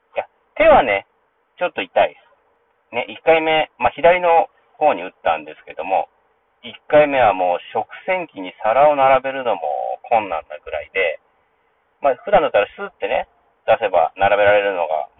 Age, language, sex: 40-59, Japanese, male